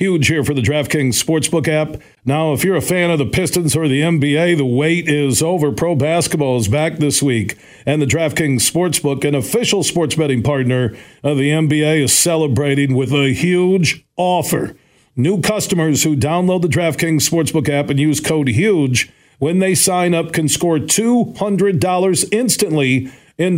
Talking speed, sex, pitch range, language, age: 170 wpm, male, 140-170 Hz, English, 50-69